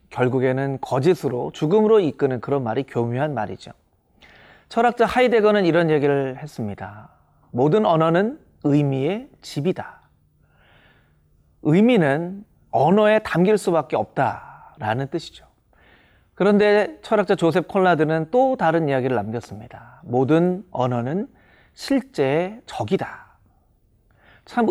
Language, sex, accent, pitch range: Korean, male, native, 125-200 Hz